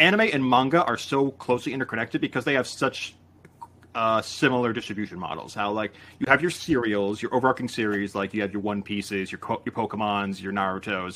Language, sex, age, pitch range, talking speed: English, male, 30-49, 100-120 Hz, 190 wpm